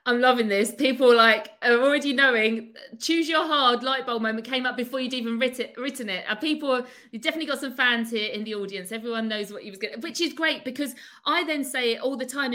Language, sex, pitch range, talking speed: English, female, 215-270 Hz, 240 wpm